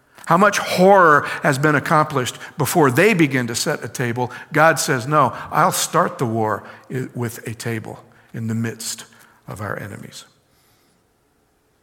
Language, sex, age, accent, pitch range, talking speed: English, male, 50-69, American, 125-170 Hz, 145 wpm